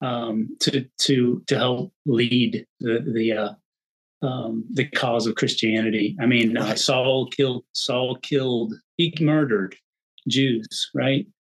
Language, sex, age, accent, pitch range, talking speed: English, male, 40-59, American, 120-140 Hz, 125 wpm